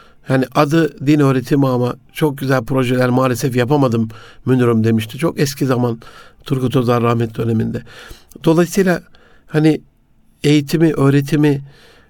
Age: 60-79